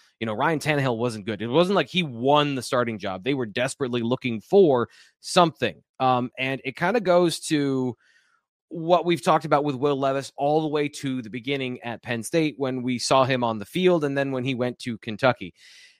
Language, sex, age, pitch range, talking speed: English, male, 20-39, 125-165 Hz, 215 wpm